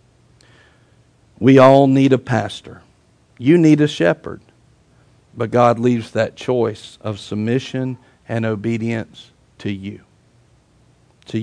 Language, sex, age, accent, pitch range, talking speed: English, male, 50-69, American, 120-180 Hz, 110 wpm